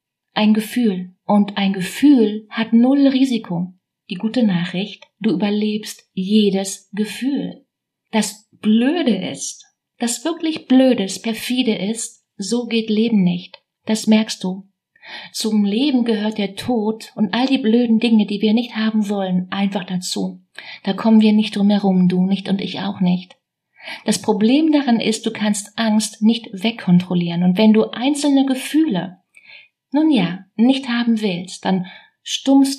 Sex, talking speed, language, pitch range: female, 145 wpm, German, 190-225 Hz